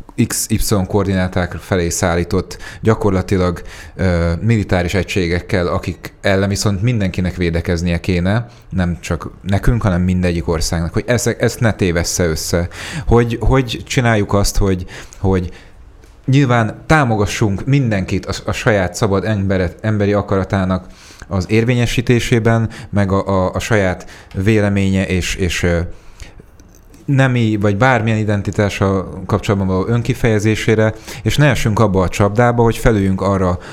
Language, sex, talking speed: Hungarian, male, 120 wpm